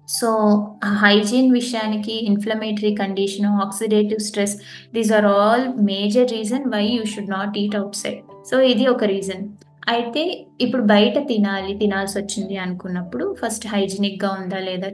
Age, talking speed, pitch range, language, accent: 20-39, 135 wpm, 195-225 Hz, Telugu, native